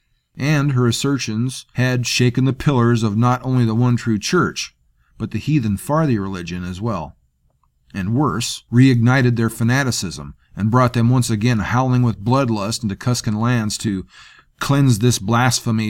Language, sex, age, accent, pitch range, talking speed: English, male, 40-59, American, 100-125 Hz, 150 wpm